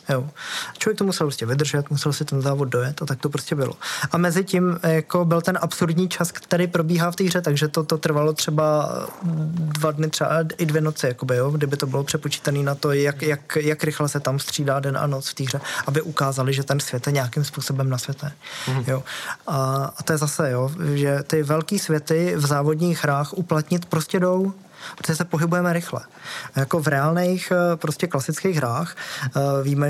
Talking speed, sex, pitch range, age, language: 195 wpm, male, 140-160 Hz, 20-39, Czech